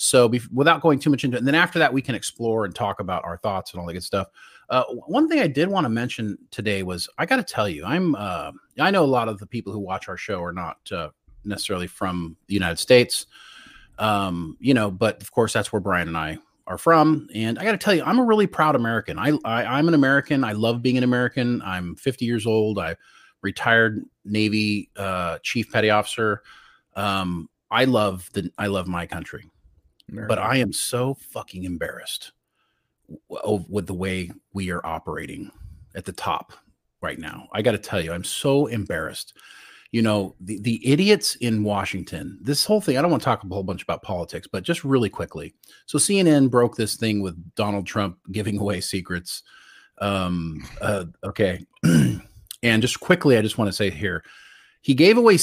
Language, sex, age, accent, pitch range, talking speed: English, male, 30-49, American, 95-135 Hz, 200 wpm